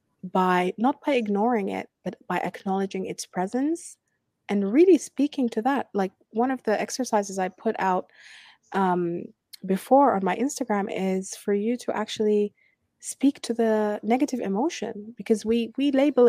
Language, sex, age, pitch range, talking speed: English, female, 20-39, 185-230 Hz, 155 wpm